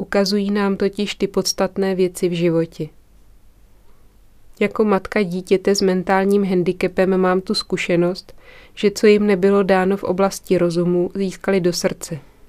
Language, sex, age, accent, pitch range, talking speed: Czech, female, 20-39, native, 175-195 Hz, 135 wpm